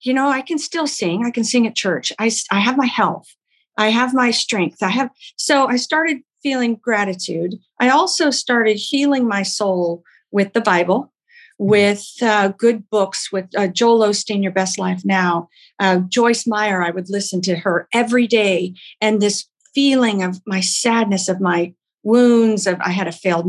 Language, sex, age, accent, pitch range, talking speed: English, female, 50-69, American, 190-255 Hz, 185 wpm